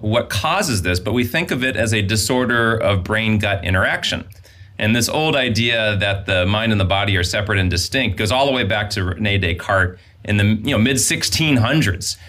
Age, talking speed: 30-49, 200 wpm